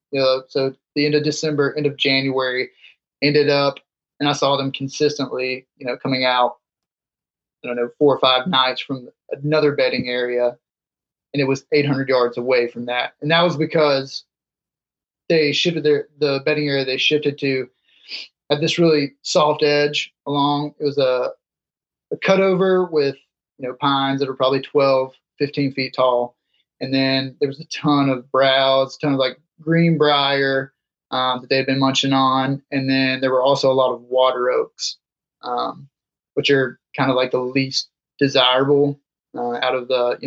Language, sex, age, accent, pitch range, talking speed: English, male, 30-49, American, 130-145 Hz, 180 wpm